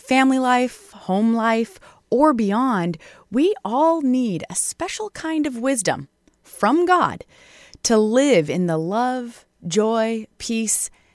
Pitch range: 190-275 Hz